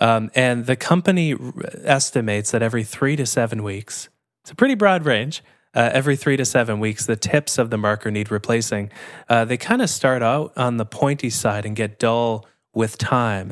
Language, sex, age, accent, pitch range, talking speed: English, male, 20-39, American, 110-135 Hz, 200 wpm